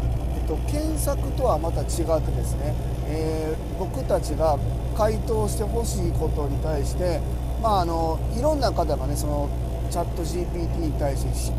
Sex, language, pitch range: male, Japanese, 105-155 Hz